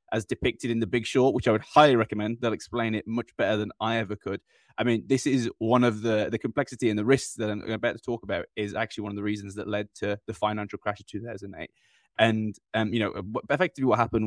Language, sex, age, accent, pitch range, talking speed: English, male, 20-39, British, 105-120 Hz, 250 wpm